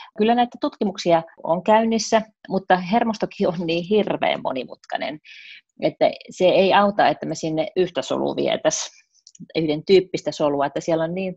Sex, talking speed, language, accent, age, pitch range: female, 150 wpm, Finnish, native, 30-49, 145-185 Hz